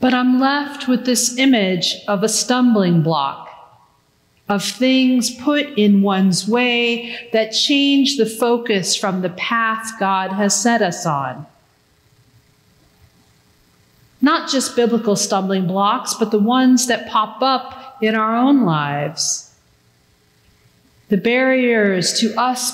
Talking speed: 125 wpm